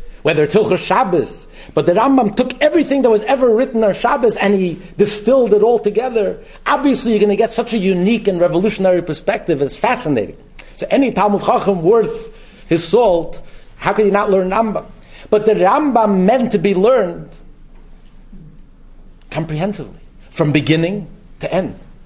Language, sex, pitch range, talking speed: English, male, 145-210 Hz, 160 wpm